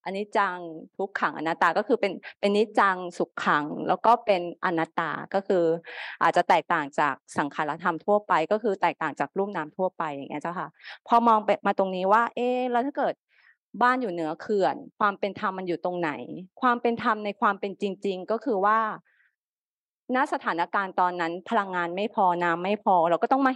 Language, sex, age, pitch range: Thai, female, 20-39, 185-230 Hz